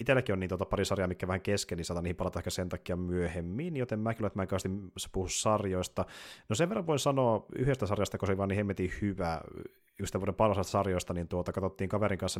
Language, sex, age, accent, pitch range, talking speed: Finnish, male, 30-49, native, 90-105 Hz, 220 wpm